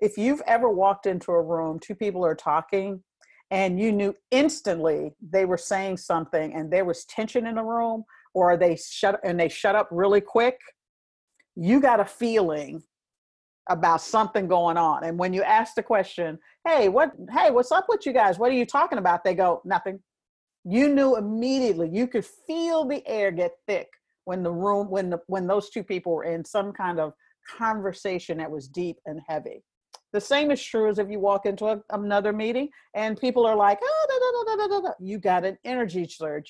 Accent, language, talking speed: American, English, 200 wpm